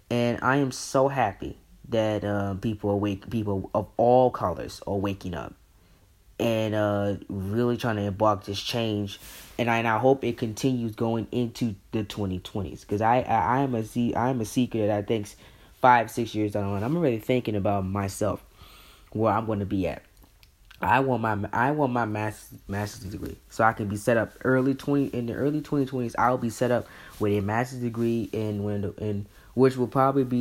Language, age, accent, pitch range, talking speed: English, 20-39, American, 100-120 Hz, 205 wpm